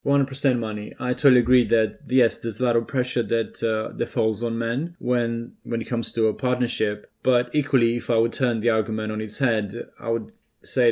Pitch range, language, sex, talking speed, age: 110-120 Hz, English, male, 225 wpm, 20-39